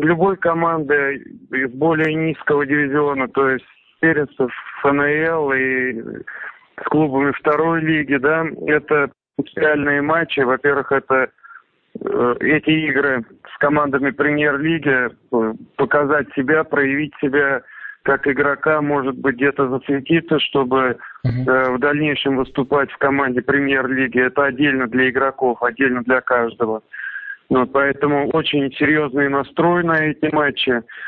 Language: Russian